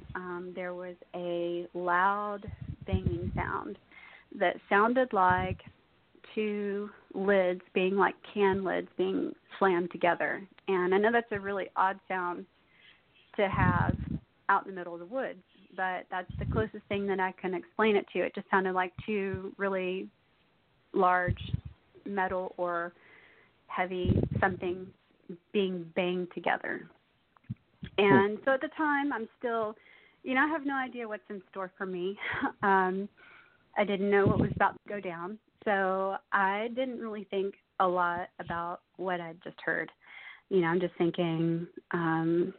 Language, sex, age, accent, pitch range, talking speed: English, female, 30-49, American, 180-215 Hz, 150 wpm